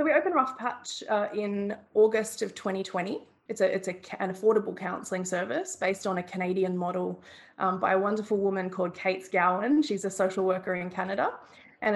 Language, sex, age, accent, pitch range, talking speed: English, female, 20-39, Australian, 180-215 Hz, 190 wpm